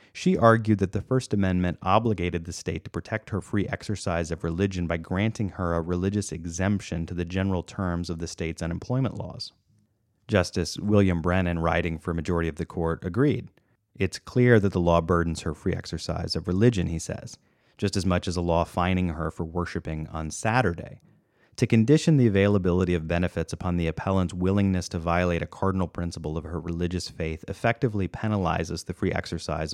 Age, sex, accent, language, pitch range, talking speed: 30-49, male, American, English, 85-105 Hz, 185 wpm